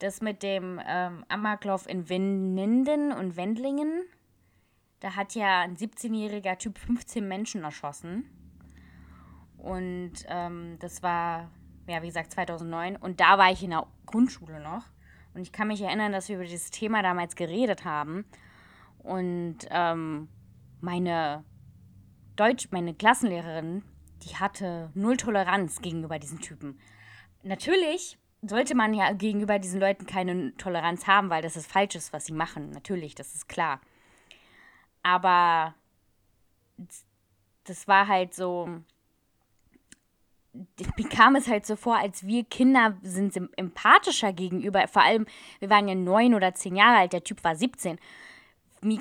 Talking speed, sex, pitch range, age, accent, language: 140 wpm, female, 160-215 Hz, 20-39, German, German